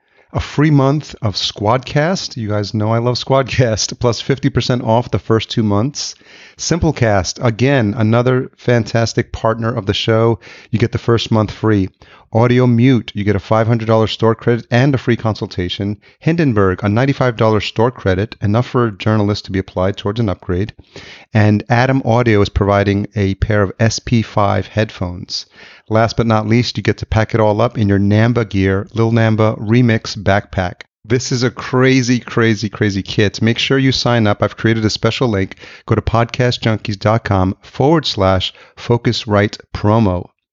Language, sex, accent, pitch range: English, male, American, 100-115 Hz